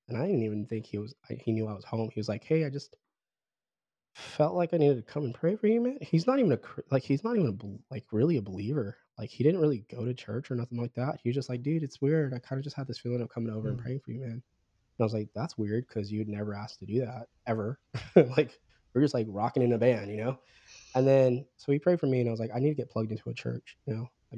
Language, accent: English, American